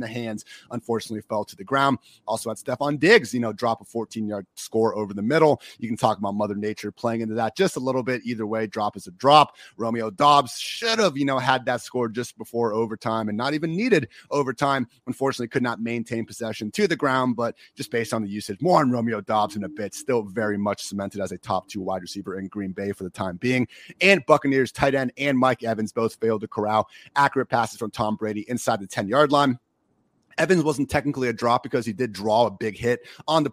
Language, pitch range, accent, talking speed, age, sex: English, 110-135 Hz, American, 235 wpm, 30-49, male